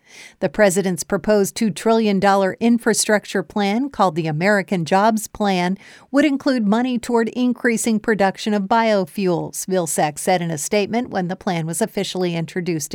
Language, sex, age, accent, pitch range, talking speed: English, female, 50-69, American, 185-220 Hz, 145 wpm